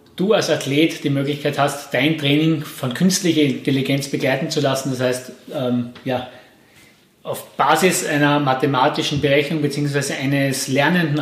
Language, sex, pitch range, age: German, male, 140-155 Hz, 30-49